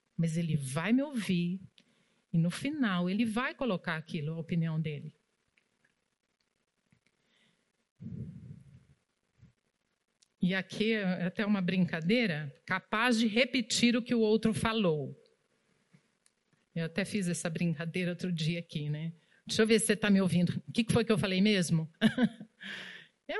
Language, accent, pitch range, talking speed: Portuguese, Brazilian, 175-230 Hz, 140 wpm